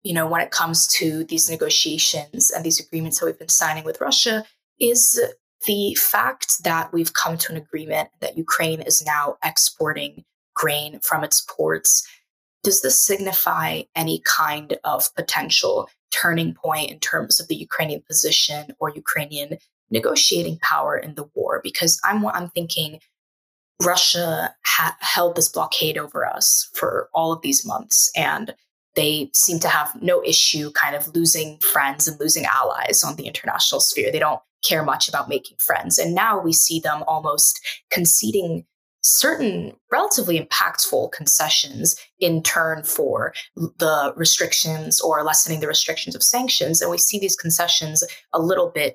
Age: 20-39